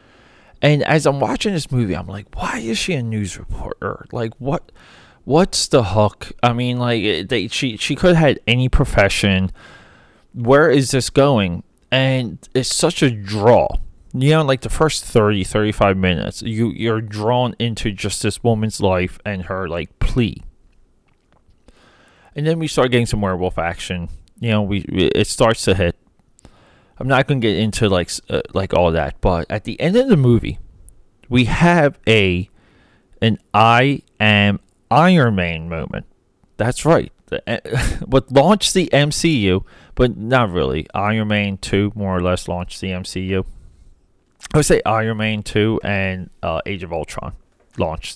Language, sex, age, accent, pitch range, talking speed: English, male, 20-39, American, 95-130 Hz, 165 wpm